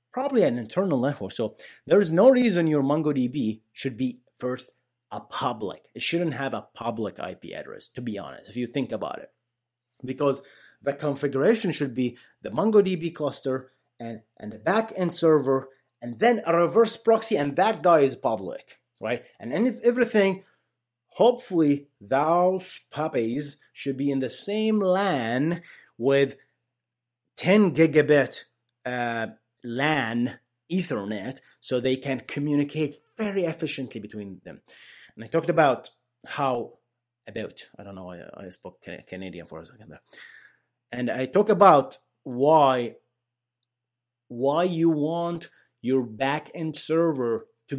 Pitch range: 120-165 Hz